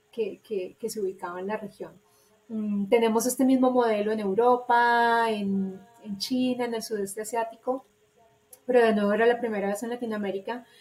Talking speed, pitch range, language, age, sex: 170 wpm, 200-235 Hz, English, 30-49, female